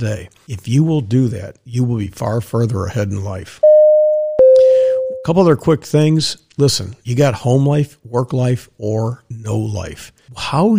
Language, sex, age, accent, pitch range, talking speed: English, male, 60-79, American, 110-140 Hz, 160 wpm